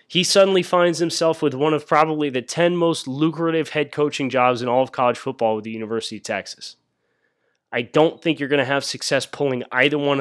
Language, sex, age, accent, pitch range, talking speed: English, male, 30-49, American, 115-150 Hz, 210 wpm